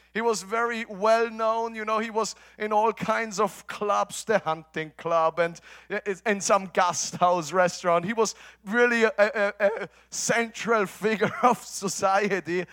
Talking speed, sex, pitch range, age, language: 150 wpm, male, 205-265 Hz, 30-49, English